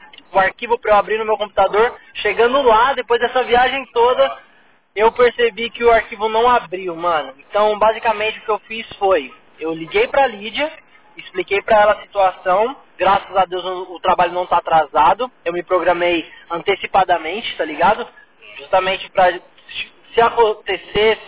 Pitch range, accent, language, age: 195-250 Hz, Brazilian, Portuguese, 20-39